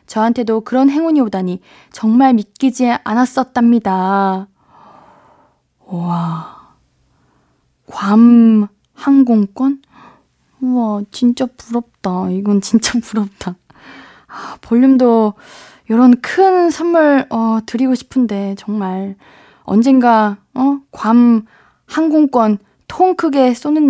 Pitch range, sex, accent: 200-290 Hz, female, native